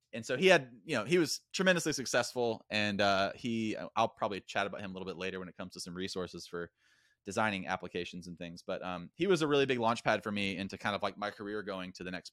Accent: American